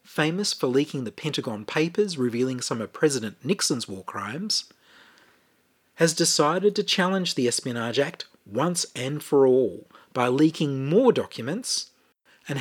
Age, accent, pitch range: 40-59, Australian, 135-195 Hz